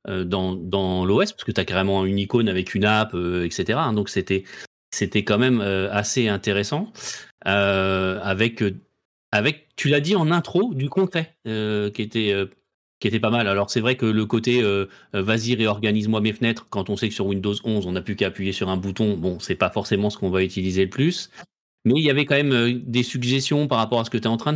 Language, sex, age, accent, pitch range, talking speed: French, male, 30-49, French, 100-125 Hz, 230 wpm